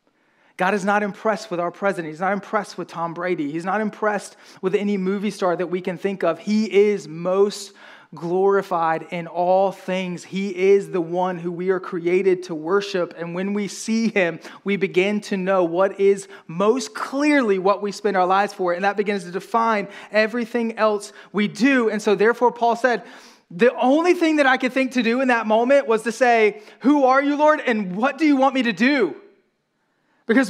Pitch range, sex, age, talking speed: 195-245 Hz, male, 20-39, 205 wpm